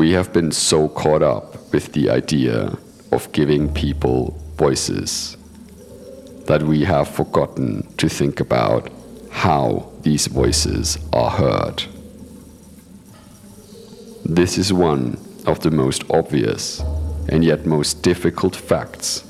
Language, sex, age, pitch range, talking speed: English, male, 50-69, 75-95 Hz, 115 wpm